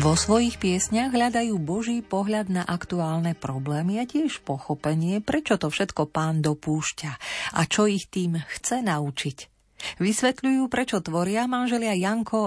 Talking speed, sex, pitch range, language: 135 wpm, female, 160-210 Hz, Slovak